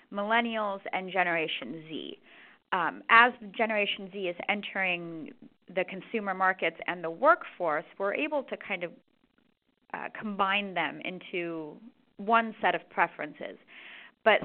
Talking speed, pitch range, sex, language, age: 125 wpm, 180-230 Hz, female, English, 30-49